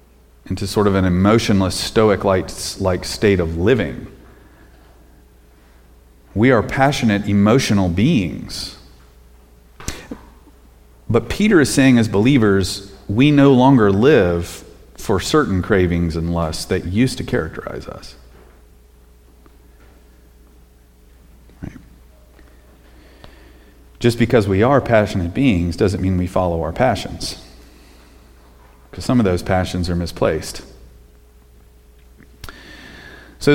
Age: 30-49